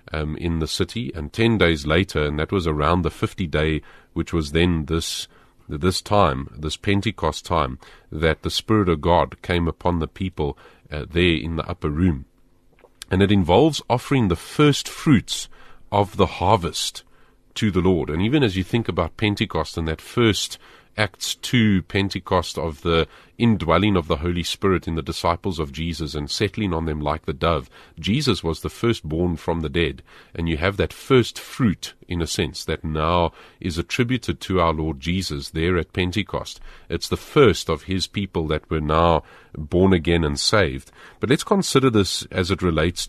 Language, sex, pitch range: English, male, 80-100 Hz